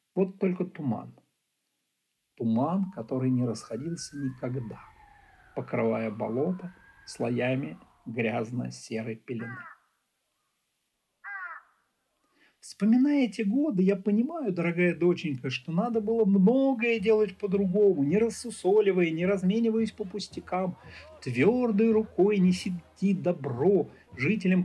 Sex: male